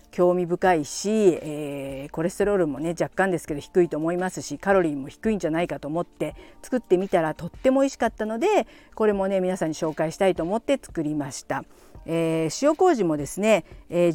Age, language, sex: 50-69, Japanese, female